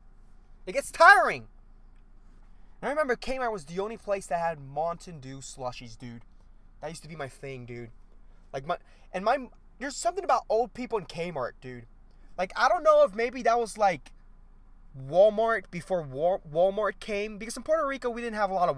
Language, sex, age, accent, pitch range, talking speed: English, male, 20-39, American, 115-185 Hz, 190 wpm